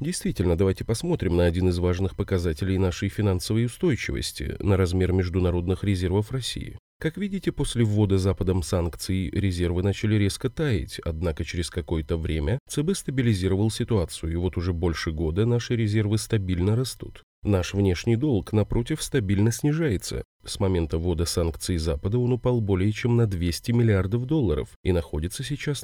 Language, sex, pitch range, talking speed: Russian, male, 90-120 Hz, 150 wpm